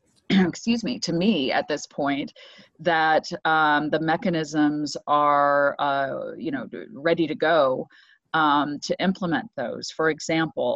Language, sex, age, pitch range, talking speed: English, female, 30-49, 145-175 Hz, 135 wpm